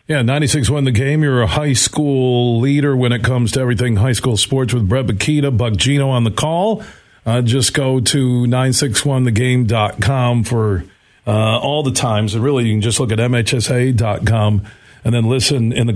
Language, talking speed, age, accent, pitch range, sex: English, 185 wpm, 40-59, American, 115-140 Hz, male